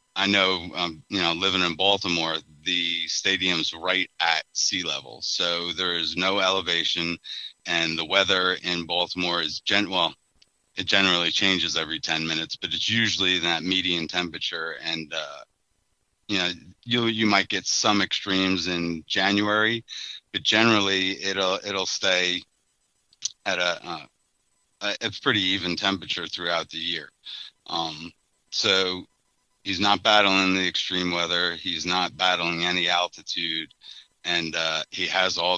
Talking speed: 140 wpm